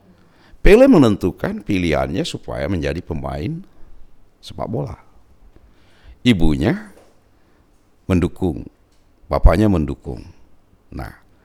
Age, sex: 50-69, male